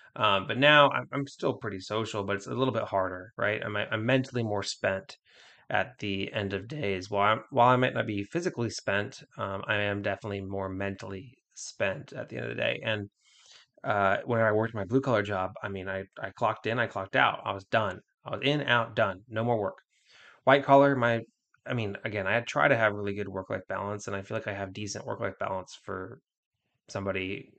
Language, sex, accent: English, male, American